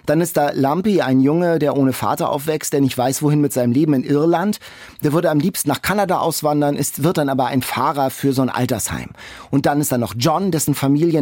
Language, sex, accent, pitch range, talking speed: German, male, German, 130-165 Hz, 235 wpm